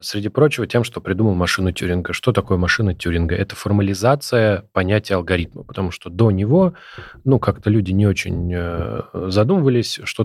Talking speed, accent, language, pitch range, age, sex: 150 wpm, native, Russian, 95-115 Hz, 20-39, male